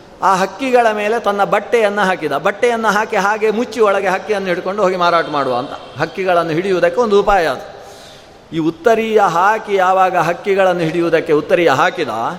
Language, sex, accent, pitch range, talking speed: Kannada, male, native, 175-225 Hz, 140 wpm